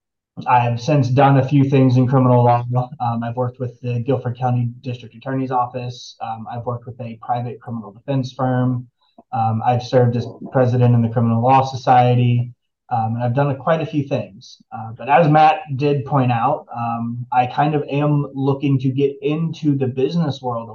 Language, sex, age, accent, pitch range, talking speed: English, male, 20-39, American, 120-130 Hz, 195 wpm